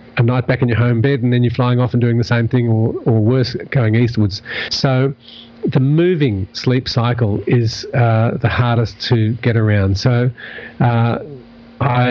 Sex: male